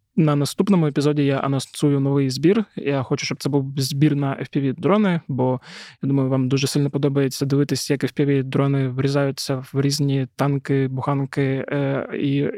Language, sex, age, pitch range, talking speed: Ukrainian, male, 20-39, 135-150 Hz, 150 wpm